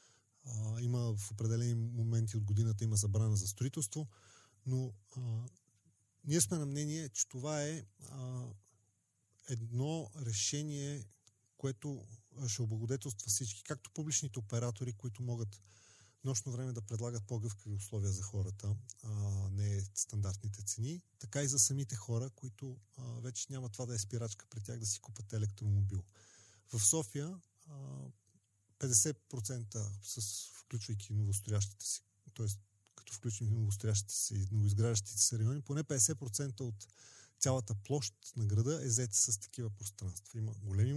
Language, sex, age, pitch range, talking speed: Bulgarian, male, 30-49, 105-130 Hz, 140 wpm